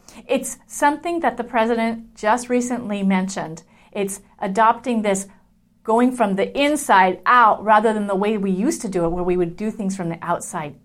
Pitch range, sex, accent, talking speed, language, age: 195-250 Hz, female, American, 185 wpm, English, 40-59